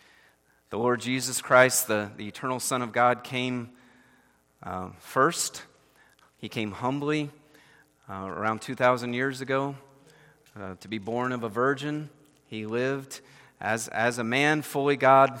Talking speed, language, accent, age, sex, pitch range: 140 wpm, English, American, 30-49, male, 105-135 Hz